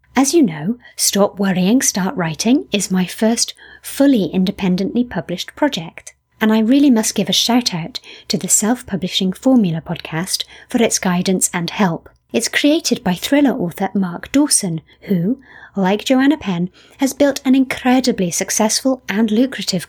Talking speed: 150 wpm